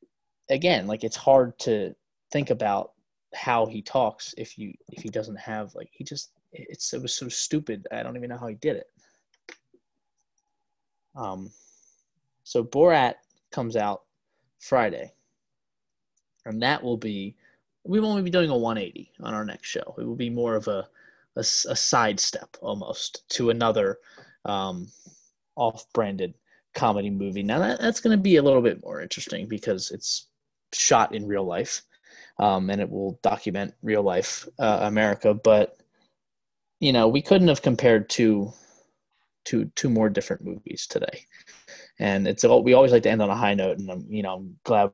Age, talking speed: 20-39, 170 wpm